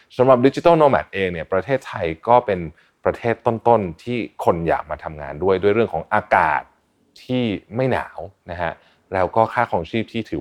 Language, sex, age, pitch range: Thai, male, 30-49, 85-125 Hz